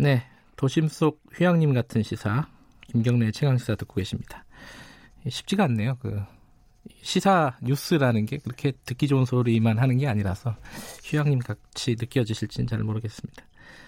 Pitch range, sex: 120-170 Hz, male